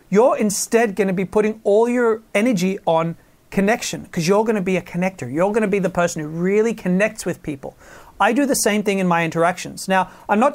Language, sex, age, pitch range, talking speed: English, male, 40-59, 175-215 Hz, 230 wpm